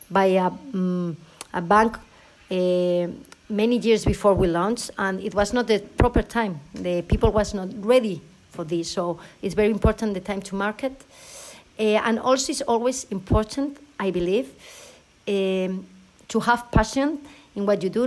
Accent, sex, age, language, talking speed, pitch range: Spanish, female, 50-69, English, 165 wpm, 185-225 Hz